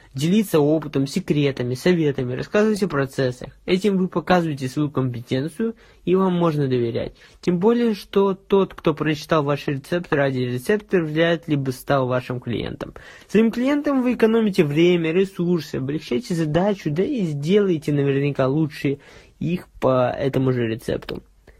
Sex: male